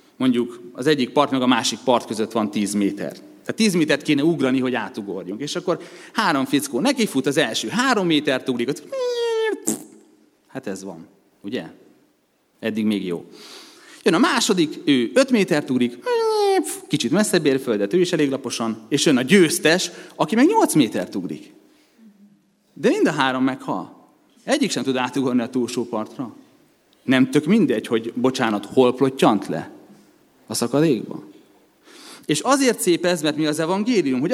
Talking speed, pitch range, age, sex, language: 165 wpm, 125-195 Hz, 30-49, male, Hungarian